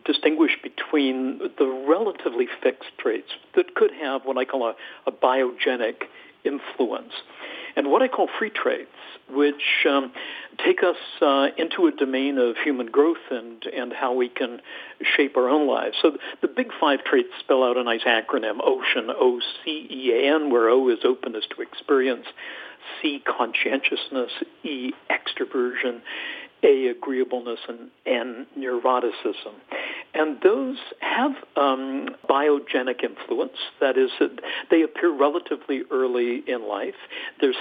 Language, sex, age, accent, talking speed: English, male, 60-79, American, 135 wpm